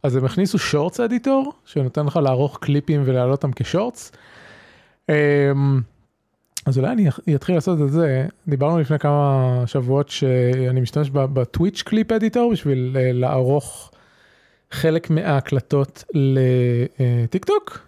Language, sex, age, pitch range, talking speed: Hebrew, male, 20-39, 130-175 Hz, 110 wpm